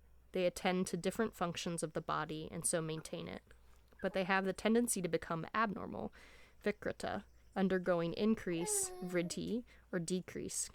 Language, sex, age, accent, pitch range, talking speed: English, female, 20-39, American, 170-210 Hz, 145 wpm